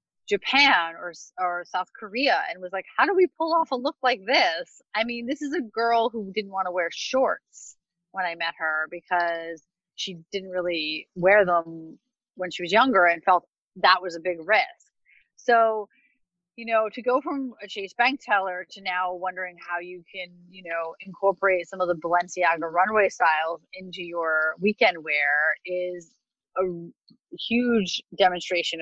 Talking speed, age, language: 175 wpm, 30-49, English